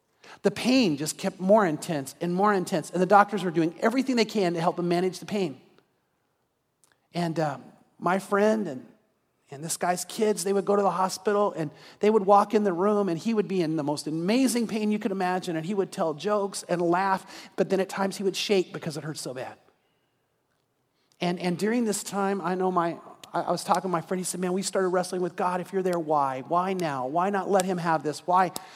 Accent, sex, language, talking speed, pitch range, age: American, male, English, 230 wpm, 145-190 Hz, 40-59